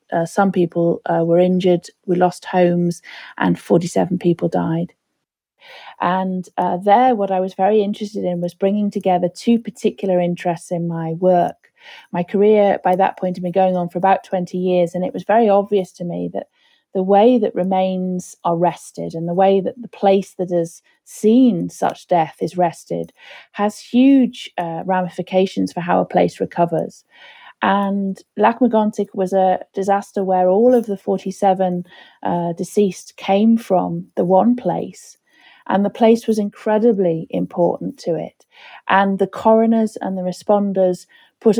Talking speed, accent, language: 160 wpm, British, English